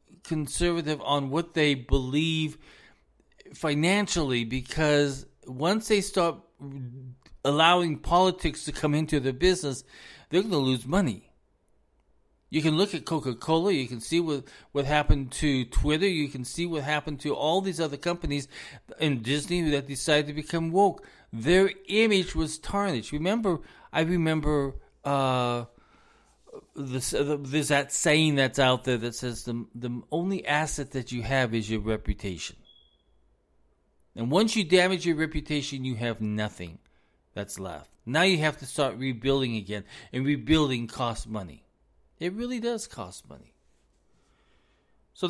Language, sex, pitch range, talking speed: English, male, 120-165 Hz, 145 wpm